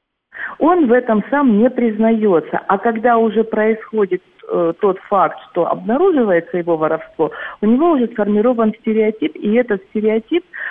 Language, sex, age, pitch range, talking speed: Russian, female, 50-69, 185-235 Hz, 140 wpm